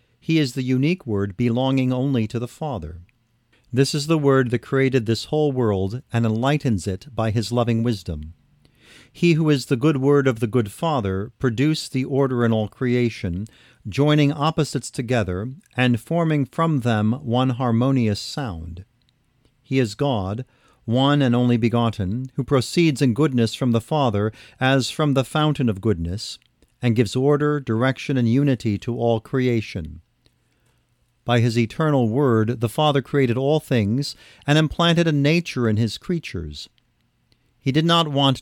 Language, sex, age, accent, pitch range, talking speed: English, male, 50-69, American, 115-140 Hz, 160 wpm